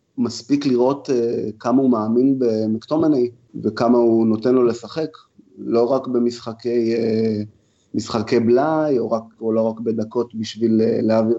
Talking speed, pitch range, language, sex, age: 115 wpm, 110-135 Hz, Hebrew, male, 30-49